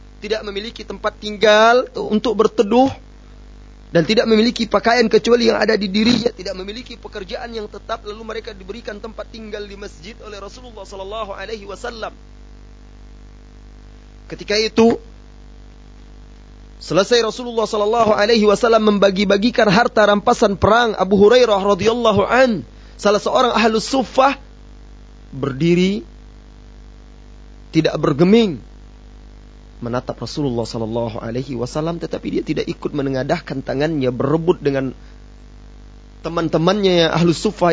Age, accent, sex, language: 30-49, native, male, Indonesian